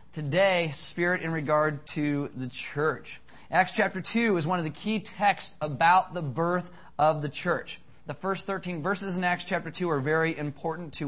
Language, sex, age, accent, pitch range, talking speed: English, male, 30-49, American, 145-180 Hz, 185 wpm